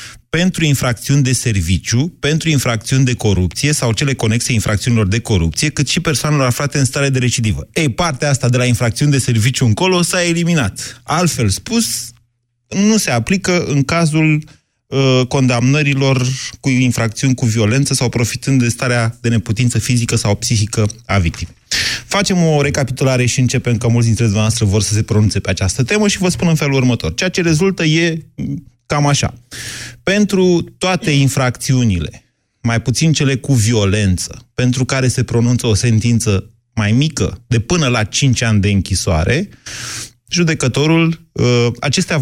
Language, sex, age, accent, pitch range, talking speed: Romanian, male, 30-49, native, 115-145 Hz, 155 wpm